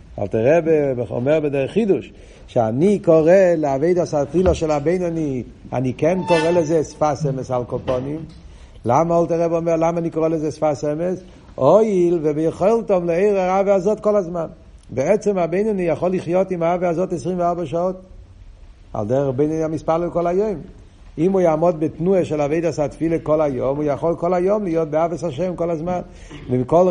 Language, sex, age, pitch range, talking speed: Hebrew, male, 50-69, 145-185 Hz, 165 wpm